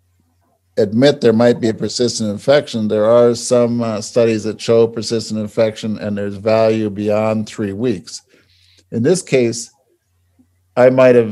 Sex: male